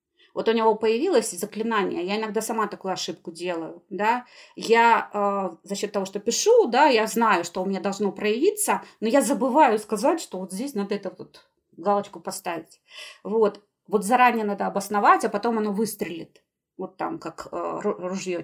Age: 30-49